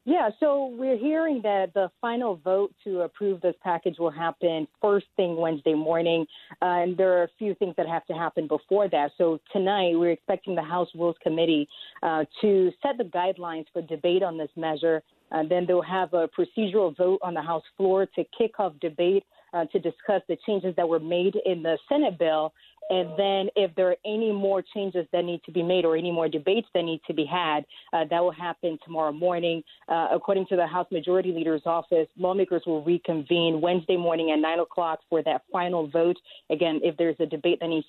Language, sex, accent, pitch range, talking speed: English, female, American, 165-190 Hz, 205 wpm